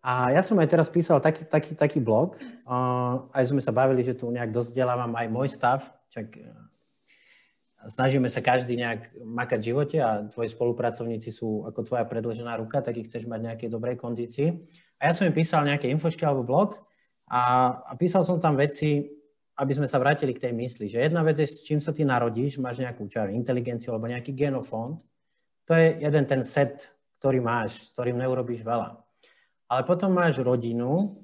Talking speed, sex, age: 185 wpm, male, 30-49